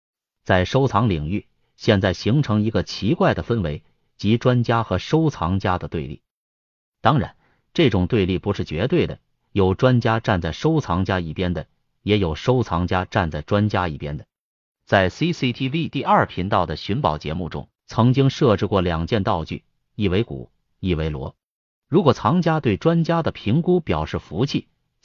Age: 30-49